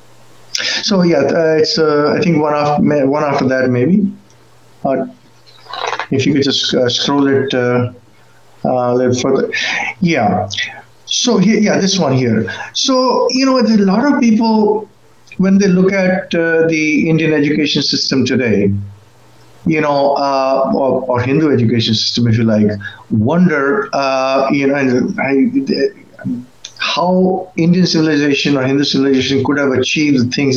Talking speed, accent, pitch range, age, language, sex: 155 wpm, Indian, 130-190 Hz, 50-69, English, male